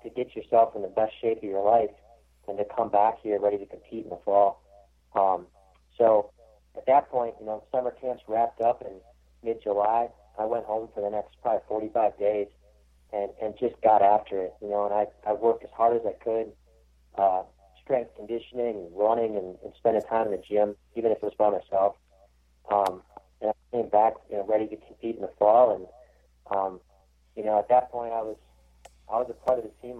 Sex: male